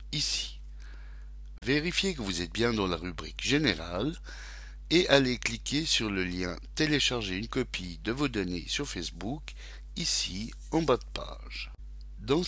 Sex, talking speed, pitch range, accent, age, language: male, 140 wpm, 90-140 Hz, French, 60-79, French